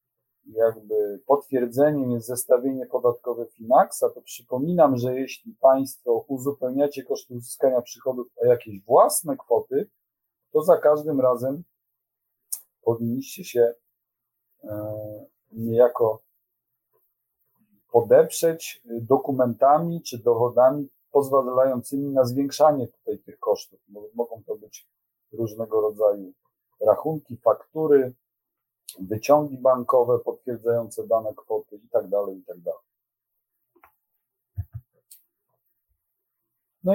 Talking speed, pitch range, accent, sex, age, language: 90 wpm, 120-150 Hz, native, male, 40-59, Polish